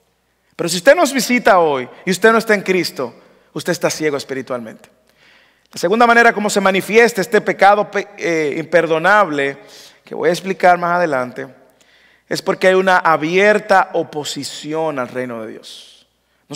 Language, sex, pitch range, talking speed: English, male, 155-210 Hz, 155 wpm